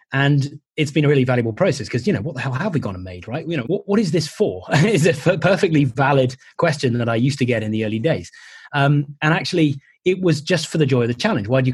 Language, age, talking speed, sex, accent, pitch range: English, 20-39, 280 wpm, male, British, 125-155 Hz